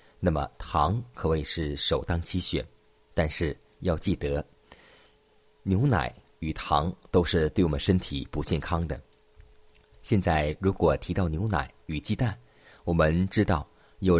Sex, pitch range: male, 75-95 Hz